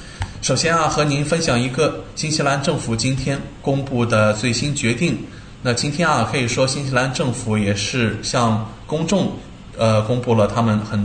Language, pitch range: Chinese, 110-140 Hz